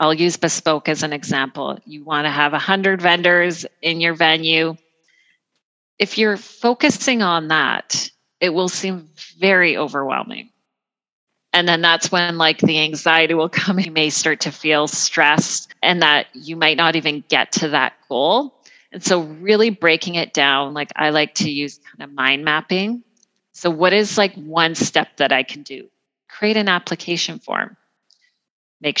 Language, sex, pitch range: English, female, 155-195 Hz